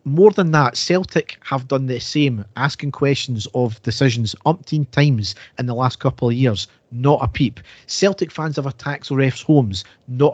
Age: 40-59